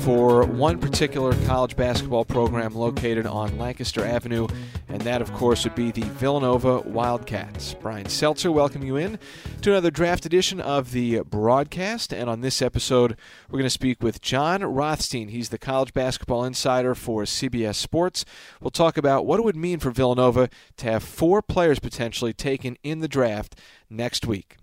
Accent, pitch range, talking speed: American, 115-145 Hz, 170 wpm